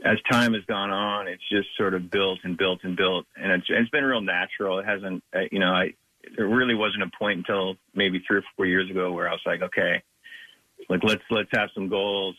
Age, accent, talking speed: 40-59, American, 230 wpm